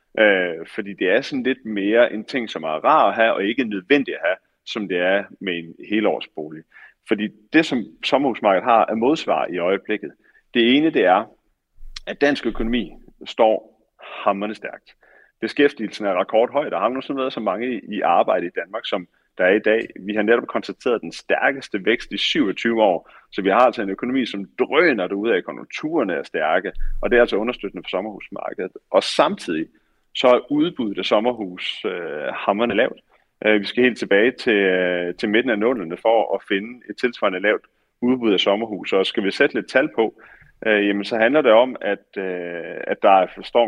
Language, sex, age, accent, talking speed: Danish, male, 30-49, native, 195 wpm